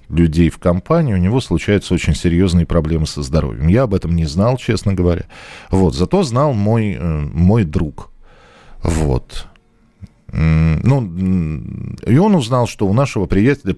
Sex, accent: male, native